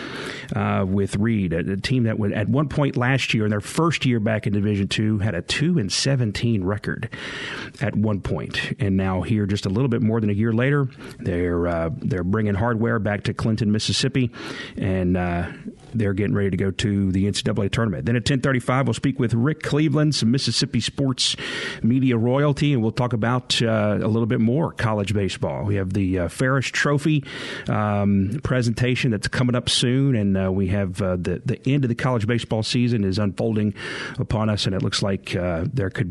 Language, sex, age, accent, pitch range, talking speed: English, male, 40-59, American, 105-130 Hz, 205 wpm